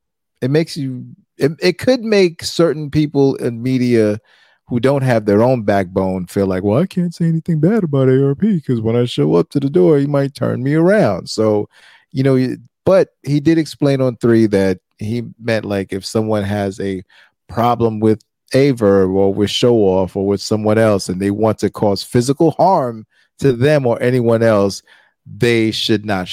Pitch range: 100-140 Hz